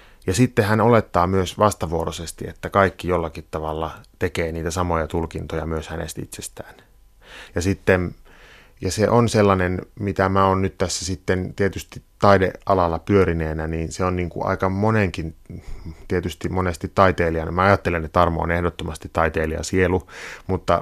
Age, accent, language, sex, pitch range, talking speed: 30-49, native, Finnish, male, 85-95 Hz, 145 wpm